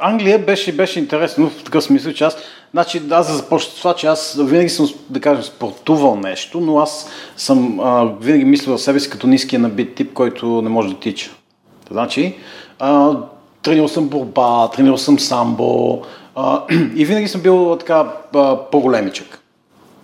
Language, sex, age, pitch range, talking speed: Bulgarian, male, 40-59, 125-170 Hz, 170 wpm